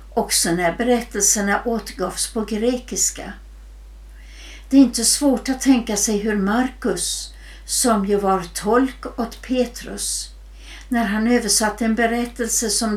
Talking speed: 125 wpm